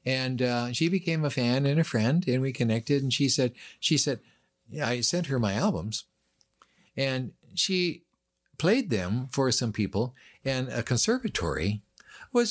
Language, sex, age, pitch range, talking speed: English, male, 60-79, 100-140 Hz, 160 wpm